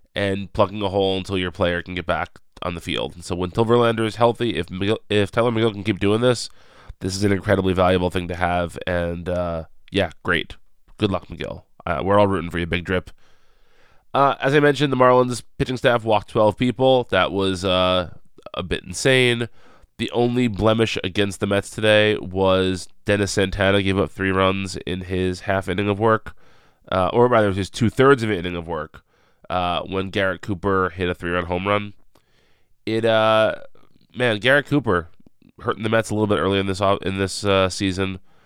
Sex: male